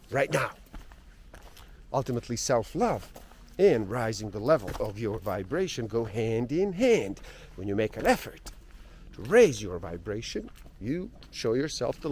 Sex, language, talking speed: male, English, 140 wpm